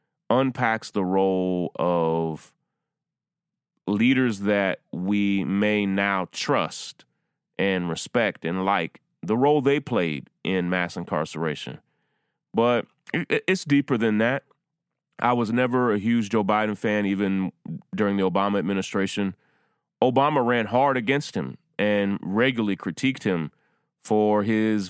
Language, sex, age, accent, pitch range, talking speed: English, male, 30-49, American, 90-115 Hz, 120 wpm